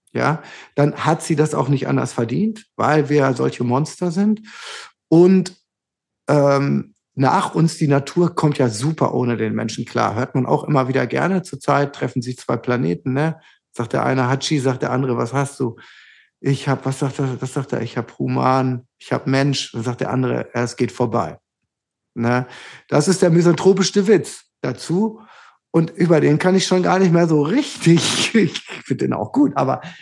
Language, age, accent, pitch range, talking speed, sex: German, 50-69, German, 130-175 Hz, 185 wpm, male